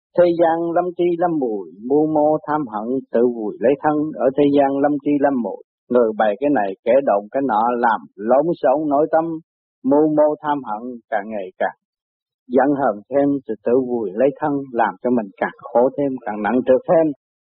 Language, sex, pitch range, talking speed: Vietnamese, male, 120-165 Hz, 210 wpm